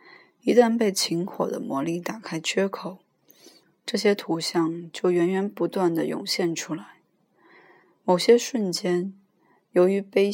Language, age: Chinese, 20-39